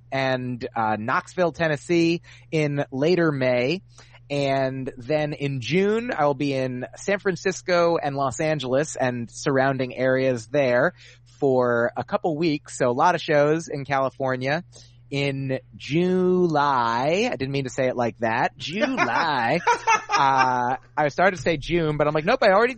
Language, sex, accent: English, male, American